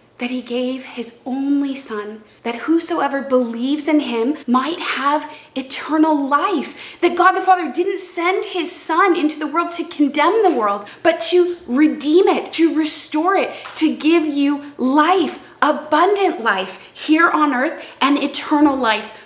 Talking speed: 155 wpm